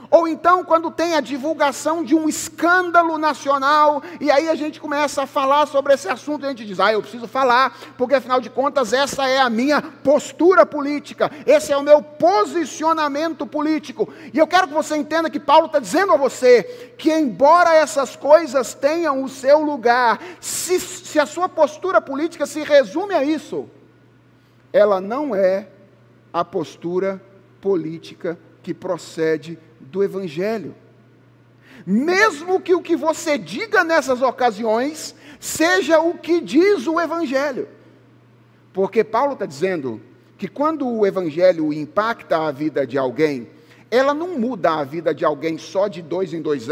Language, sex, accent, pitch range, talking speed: Portuguese, male, Brazilian, 185-310 Hz, 160 wpm